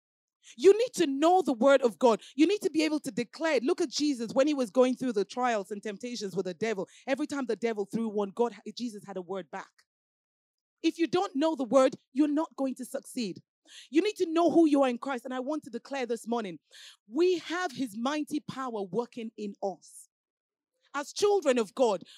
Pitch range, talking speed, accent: 240-330 Hz, 220 wpm, Nigerian